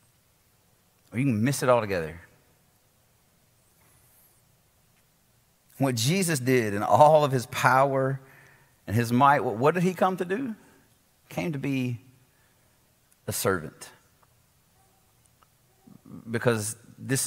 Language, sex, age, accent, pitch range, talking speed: English, male, 40-59, American, 110-130 Hz, 110 wpm